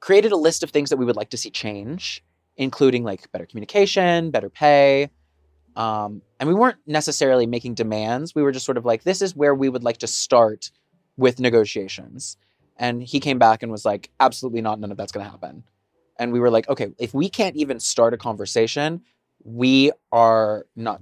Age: 20-39